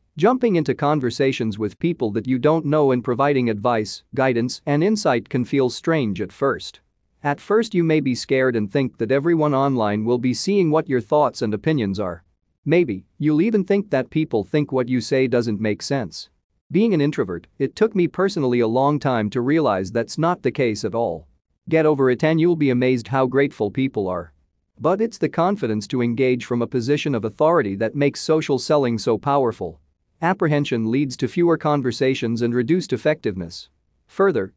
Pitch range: 115-150 Hz